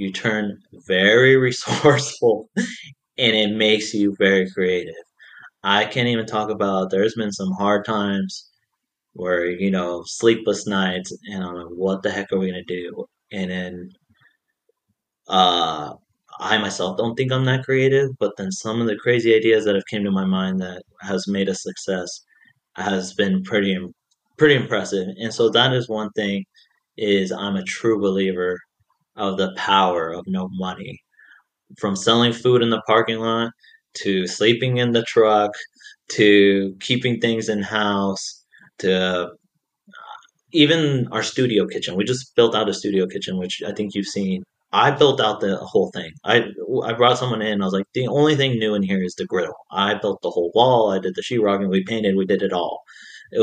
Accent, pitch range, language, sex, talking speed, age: American, 95-120 Hz, English, male, 180 wpm, 30-49